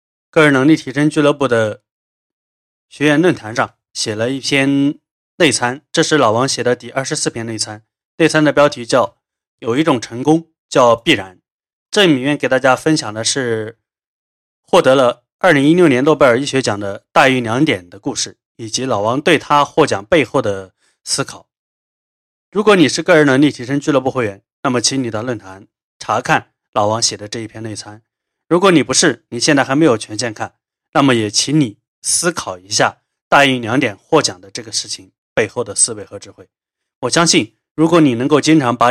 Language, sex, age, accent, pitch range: Chinese, male, 20-39, native, 110-145 Hz